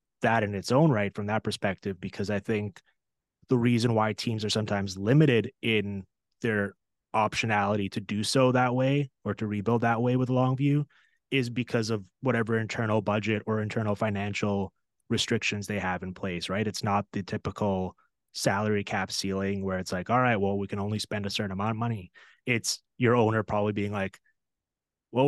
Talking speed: 185 wpm